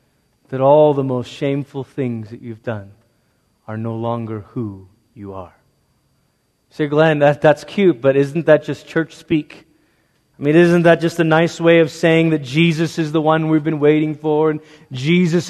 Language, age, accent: English, 30-49, American